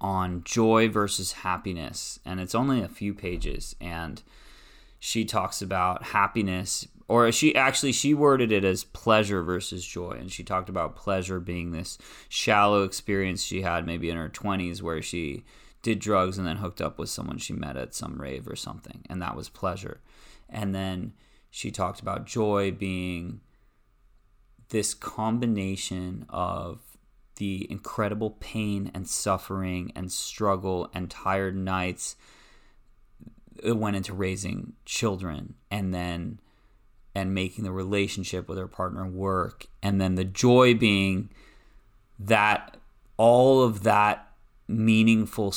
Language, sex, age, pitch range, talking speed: English, male, 20-39, 95-110 Hz, 140 wpm